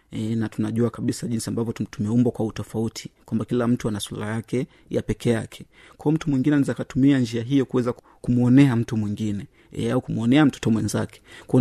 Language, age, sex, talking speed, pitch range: Swahili, 30-49, male, 185 wpm, 110-130 Hz